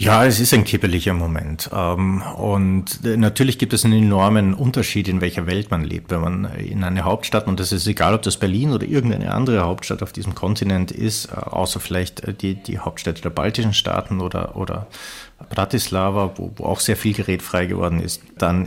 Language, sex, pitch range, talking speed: German, male, 90-110 Hz, 190 wpm